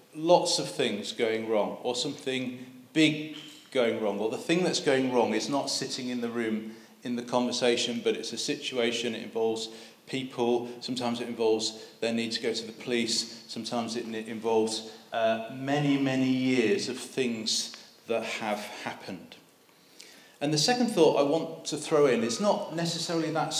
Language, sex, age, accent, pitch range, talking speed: English, male, 40-59, British, 120-165 Hz, 175 wpm